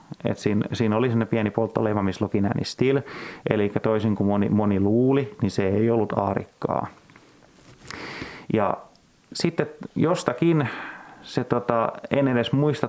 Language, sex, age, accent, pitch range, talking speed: Finnish, male, 30-49, native, 105-120 Hz, 125 wpm